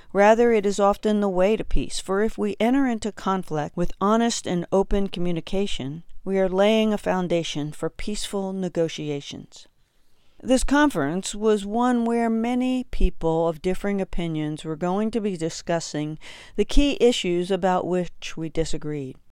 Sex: female